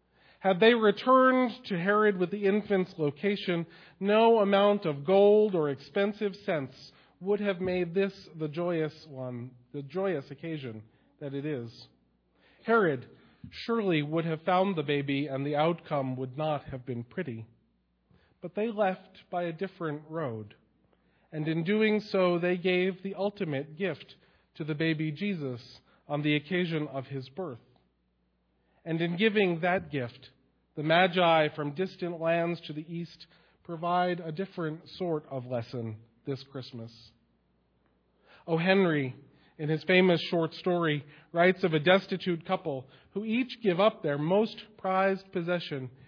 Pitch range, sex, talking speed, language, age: 140-190 Hz, male, 145 wpm, English, 40-59